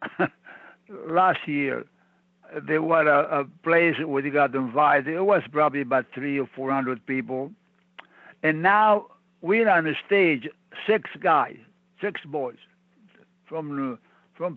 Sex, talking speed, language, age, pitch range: male, 125 wpm, English, 60-79, 145-185 Hz